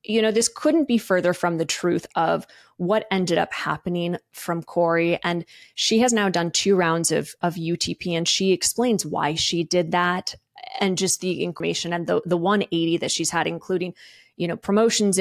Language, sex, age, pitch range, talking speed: English, female, 20-39, 170-195 Hz, 190 wpm